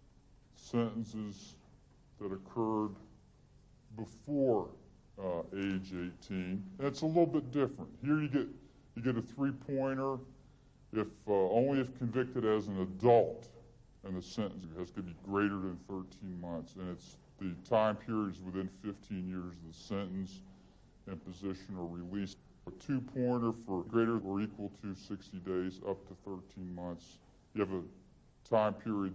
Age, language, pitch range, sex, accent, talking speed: 50-69, English, 95-130 Hz, female, American, 145 wpm